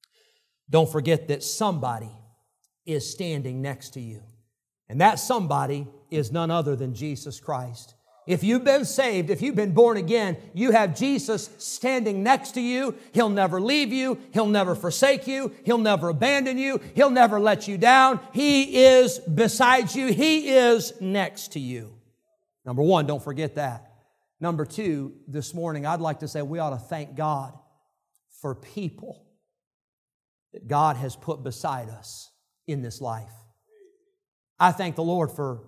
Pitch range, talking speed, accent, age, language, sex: 140-200 Hz, 160 wpm, American, 50-69, English, male